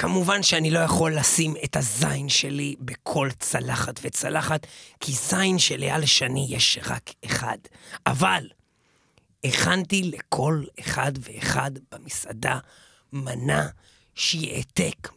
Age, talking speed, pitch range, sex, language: 40-59, 105 wpm, 135-160 Hz, male, Hebrew